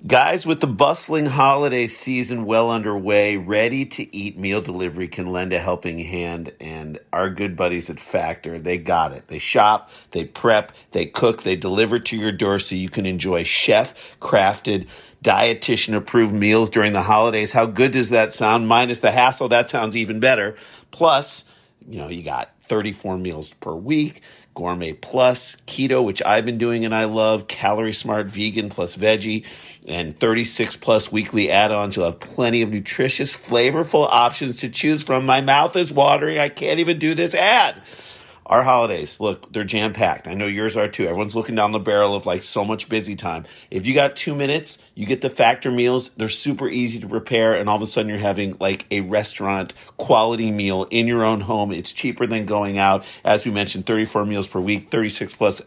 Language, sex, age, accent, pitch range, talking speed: English, male, 50-69, American, 100-120 Hz, 190 wpm